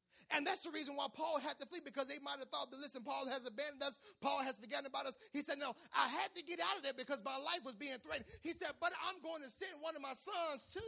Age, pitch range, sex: 30-49, 245-305 Hz, male